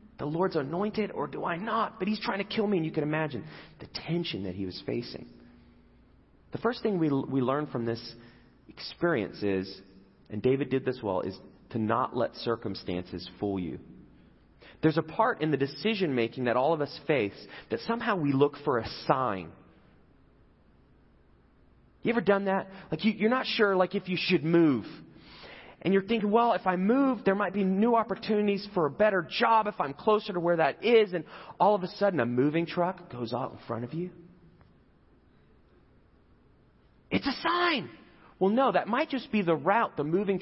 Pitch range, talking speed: 145-215 Hz, 190 wpm